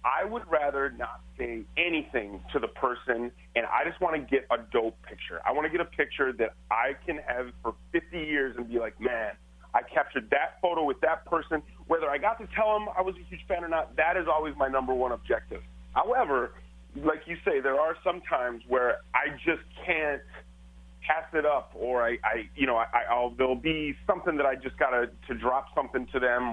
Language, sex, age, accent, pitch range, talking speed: English, male, 30-49, American, 105-150 Hz, 215 wpm